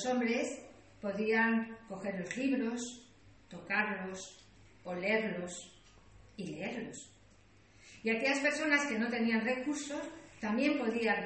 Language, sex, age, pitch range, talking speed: Spanish, female, 40-59, 190-255 Hz, 100 wpm